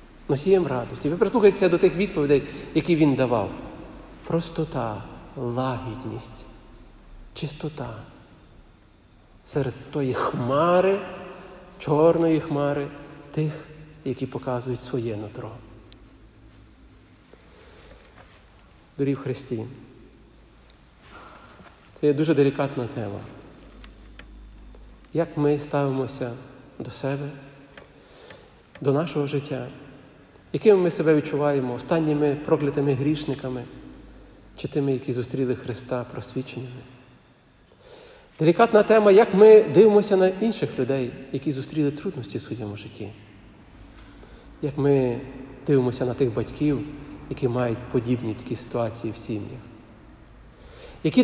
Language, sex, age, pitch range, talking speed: Ukrainian, male, 50-69, 120-155 Hz, 95 wpm